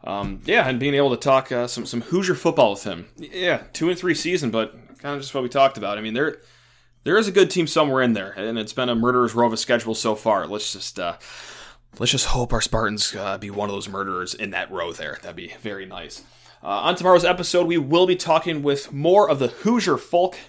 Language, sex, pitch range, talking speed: English, male, 115-160 Hz, 250 wpm